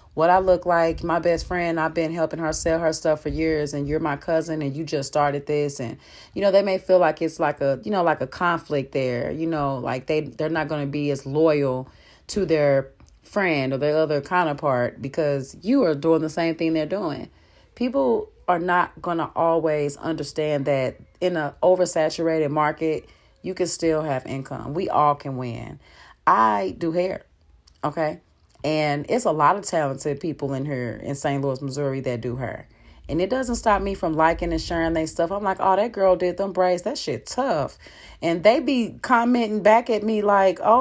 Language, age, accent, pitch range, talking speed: English, 30-49, American, 145-195 Hz, 205 wpm